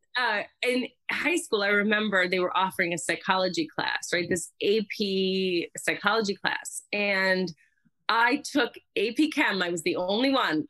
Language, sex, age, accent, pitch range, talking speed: English, female, 30-49, American, 185-270 Hz, 150 wpm